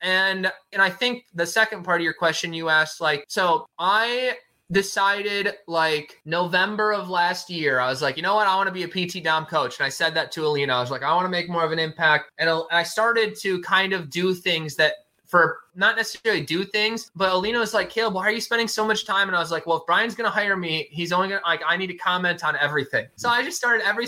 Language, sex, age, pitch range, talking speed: English, male, 20-39, 160-210 Hz, 265 wpm